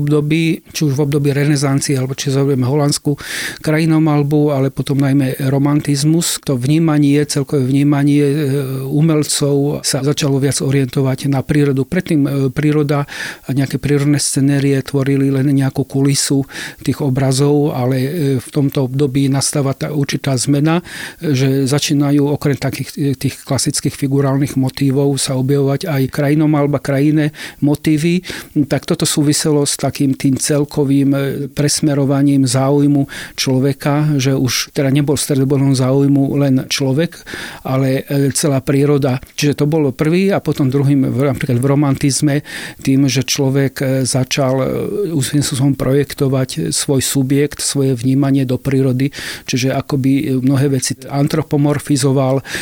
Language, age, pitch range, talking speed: Slovak, 40-59, 135-145 Hz, 120 wpm